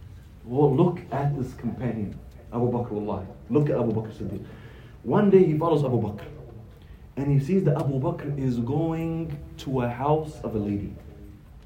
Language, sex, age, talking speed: English, male, 30-49, 160 wpm